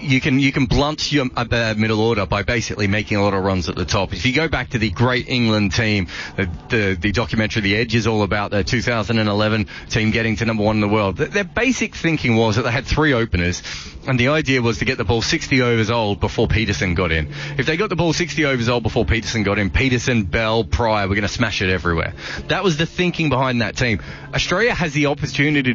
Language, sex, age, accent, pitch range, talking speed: English, male, 30-49, Australian, 110-155 Hz, 240 wpm